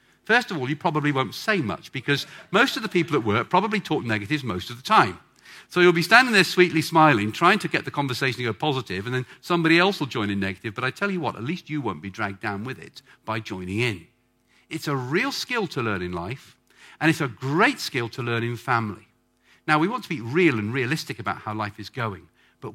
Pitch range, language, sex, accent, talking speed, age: 105-155 Hz, English, male, British, 245 wpm, 50-69